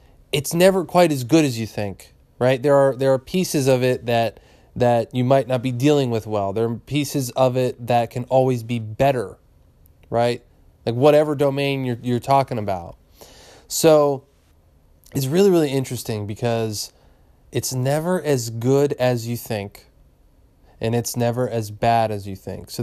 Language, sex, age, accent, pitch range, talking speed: English, male, 20-39, American, 110-140 Hz, 170 wpm